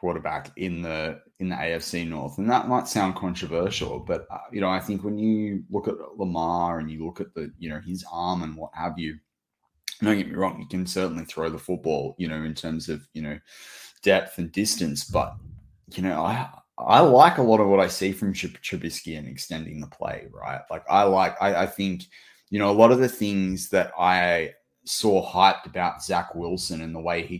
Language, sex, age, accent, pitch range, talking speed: English, male, 20-39, Australian, 85-95 Hz, 215 wpm